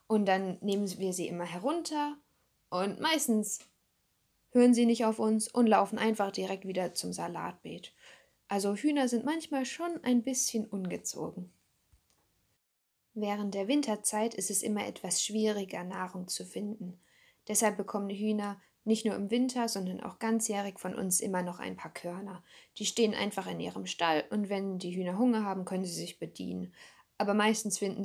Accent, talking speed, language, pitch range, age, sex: German, 165 wpm, German, 185-220 Hz, 10-29, female